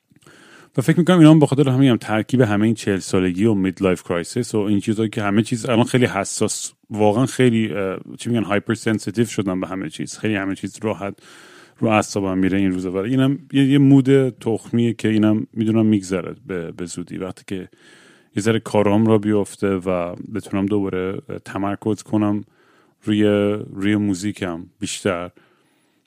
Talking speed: 160 wpm